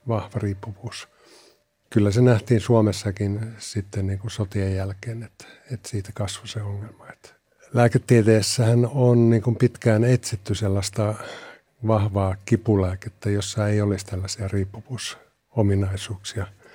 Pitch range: 100-115 Hz